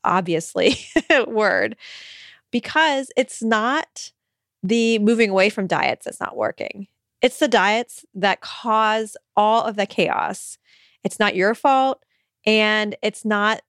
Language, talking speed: English, 125 wpm